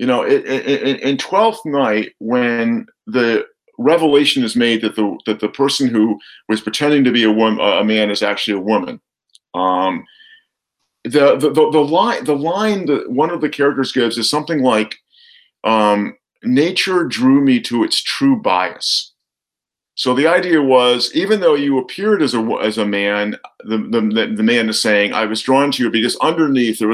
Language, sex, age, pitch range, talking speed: English, male, 50-69, 115-175 Hz, 180 wpm